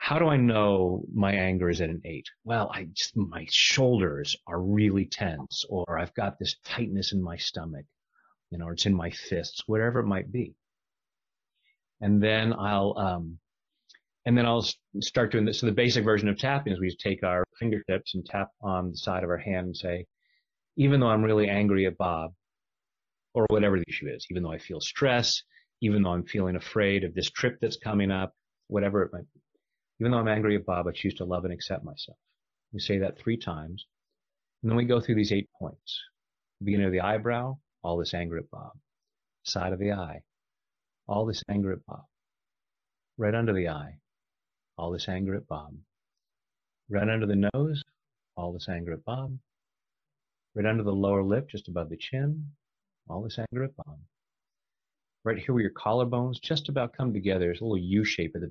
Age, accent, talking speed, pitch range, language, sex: 30-49, American, 195 wpm, 90-115 Hz, English, male